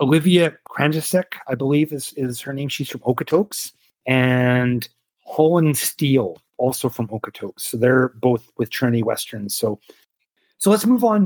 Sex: male